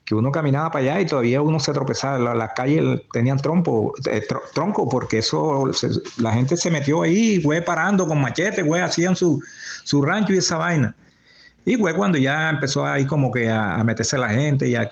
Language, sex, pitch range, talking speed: Spanish, male, 110-140 Hz, 200 wpm